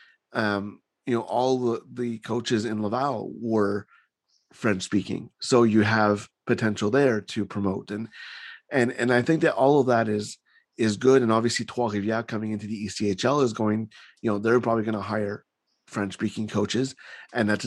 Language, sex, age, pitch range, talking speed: English, male, 30-49, 105-125 Hz, 175 wpm